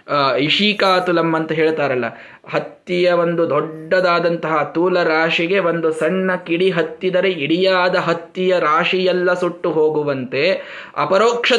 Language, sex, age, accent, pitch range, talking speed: Kannada, male, 20-39, native, 185-245 Hz, 95 wpm